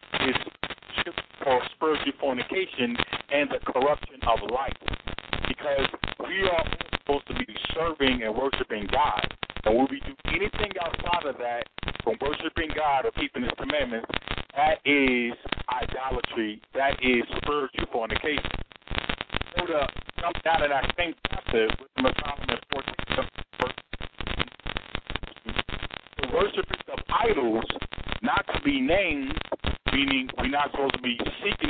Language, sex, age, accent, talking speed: English, male, 50-69, American, 120 wpm